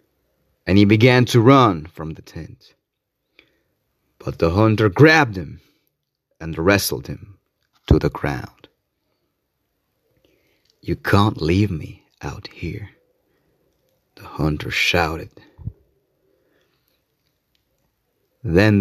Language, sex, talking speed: Italian, male, 95 wpm